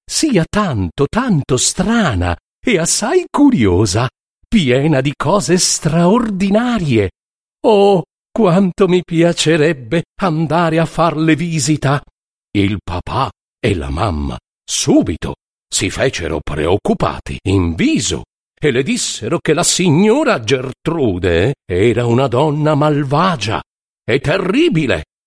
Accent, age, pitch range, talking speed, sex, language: native, 50-69, 115-180 Hz, 100 wpm, male, Italian